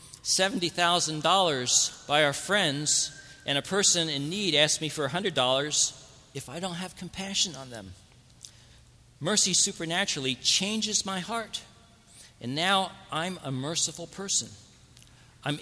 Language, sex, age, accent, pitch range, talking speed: English, male, 40-59, American, 115-155 Hz, 120 wpm